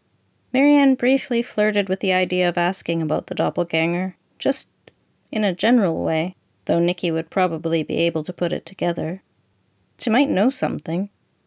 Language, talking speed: English, 155 wpm